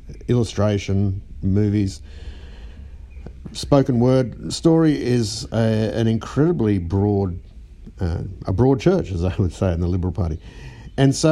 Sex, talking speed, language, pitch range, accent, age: male, 125 wpm, English, 85-110 Hz, Australian, 50-69